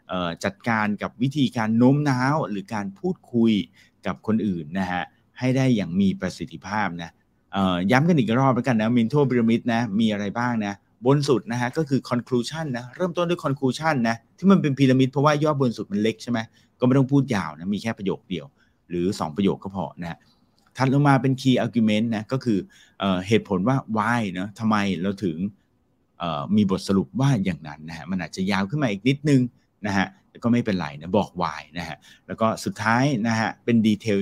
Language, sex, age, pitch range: English, male, 30-49, 95-130 Hz